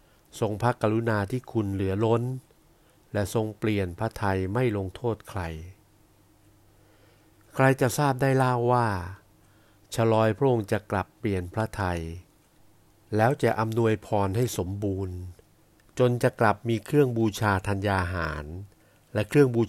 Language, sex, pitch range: Thai, male, 100-115 Hz